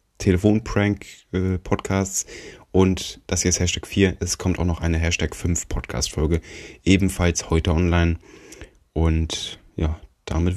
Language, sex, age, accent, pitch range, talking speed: German, male, 20-39, German, 85-100 Hz, 120 wpm